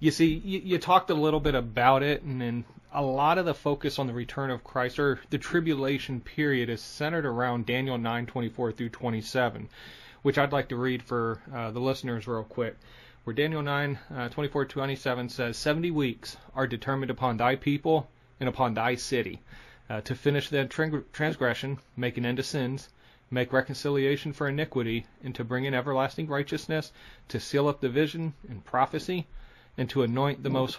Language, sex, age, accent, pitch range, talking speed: English, male, 30-49, American, 125-145 Hz, 180 wpm